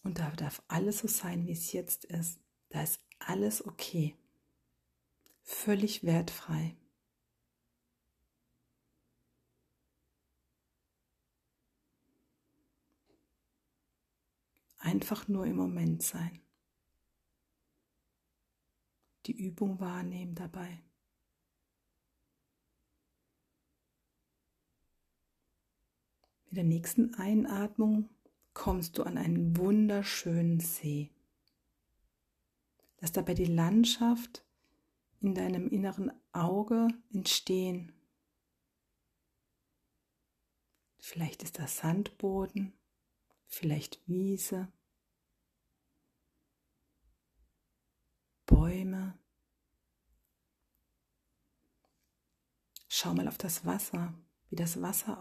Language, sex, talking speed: German, female, 65 wpm